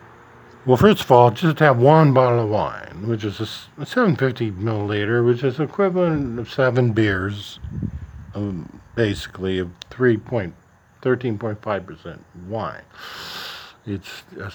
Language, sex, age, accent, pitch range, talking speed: English, male, 50-69, American, 100-125 Hz, 140 wpm